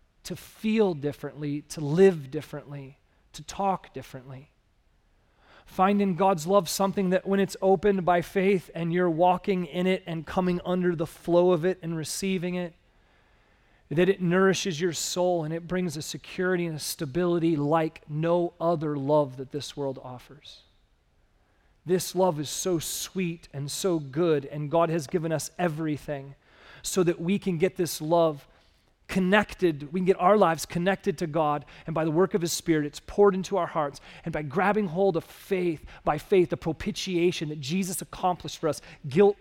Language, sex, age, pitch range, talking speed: English, male, 30-49, 150-195 Hz, 175 wpm